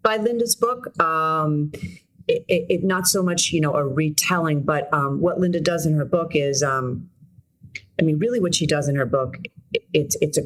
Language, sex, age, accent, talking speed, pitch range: English, female, 40-59, American, 210 wpm, 140-175 Hz